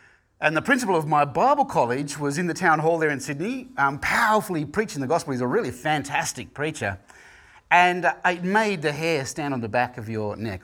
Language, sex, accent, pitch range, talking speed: English, male, Australian, 125-155 Hz, 215 wpm